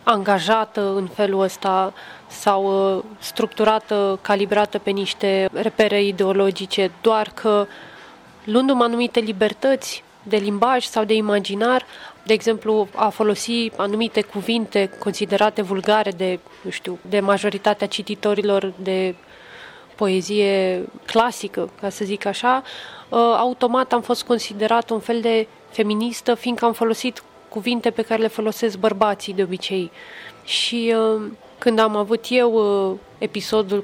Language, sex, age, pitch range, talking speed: Romanian, female, 20-39, 200-230 Hz, 125 wpm